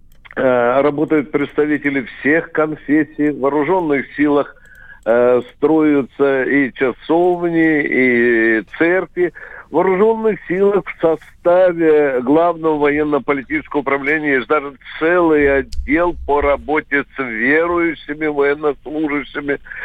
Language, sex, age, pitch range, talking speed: Russian, male, 60-79, 135-165 Hz, 90 wpm